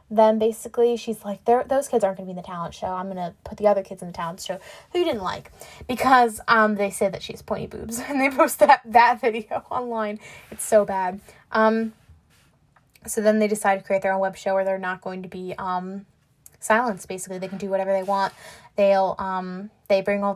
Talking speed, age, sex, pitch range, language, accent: 235 wpm, 10-29, female, 195-235 Hz, English, American